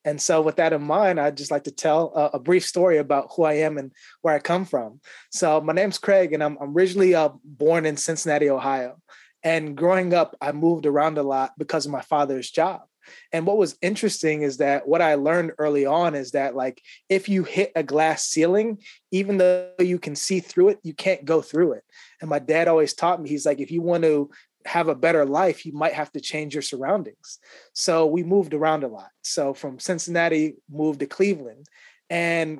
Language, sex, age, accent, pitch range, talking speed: English, male, 20-39, American, 145-175 Hz, 215 wpm